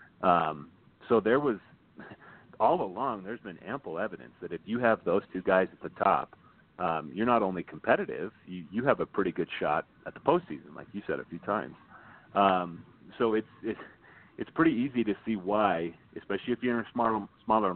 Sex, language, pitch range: male, English, 90-110 Hz